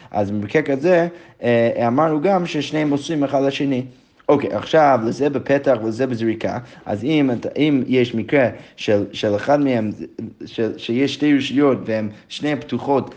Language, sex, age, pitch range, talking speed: Hebrew, male, 20-39, 115-145 Hz, 125 wpm